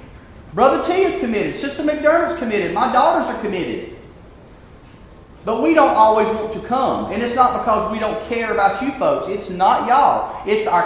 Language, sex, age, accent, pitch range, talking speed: English, male, 40-59, American, 180-255 Hz, 180 wpm